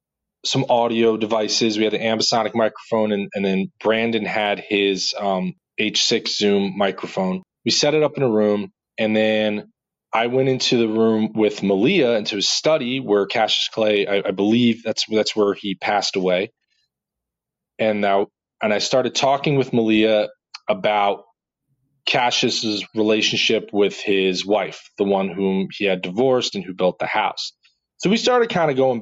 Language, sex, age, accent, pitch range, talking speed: English, male, 20-39, American, 105-130 Hz, 165 wpm